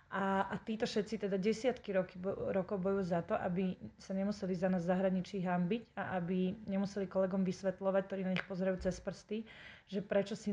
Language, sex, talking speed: Slovak, female, 190 wpm